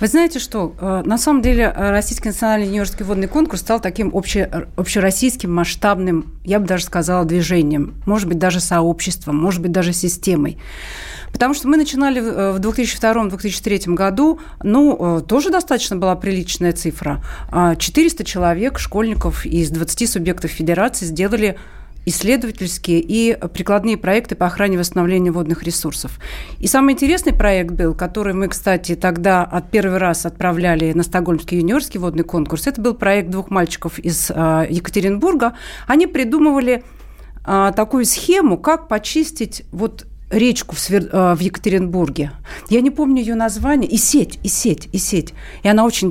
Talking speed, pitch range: 140 wpm, 170-230 Hz